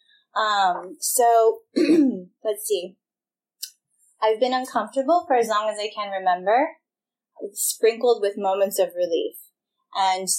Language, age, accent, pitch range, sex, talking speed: English, 20-39, American, 195-255 Hz, female, 120 wpm